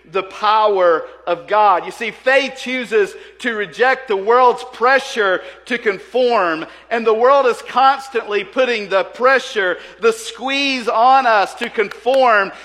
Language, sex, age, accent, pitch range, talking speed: English, male, 50-69, American, 185-255 Hz, 140 wpm